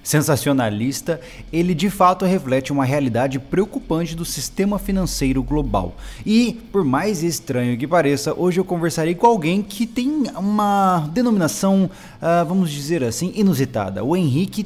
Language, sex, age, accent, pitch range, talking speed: Portuguese, male, 20-39, Brazilian, 130-175 Hz, 135 wpm